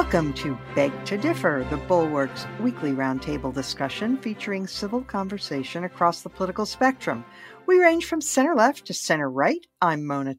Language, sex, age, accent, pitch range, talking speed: English, female, 50-69, American, 145-225 Hz, 155 wpm